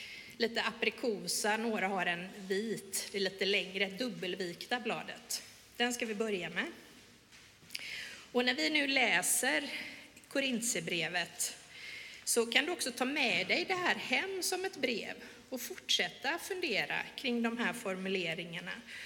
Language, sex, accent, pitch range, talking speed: Swedish, female, native, 190-260 Hz, 135 wpm